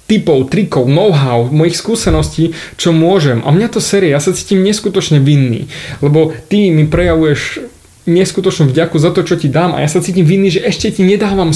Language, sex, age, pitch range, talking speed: Slovak, male, 20-39, 130-170 Hz, 185 wpm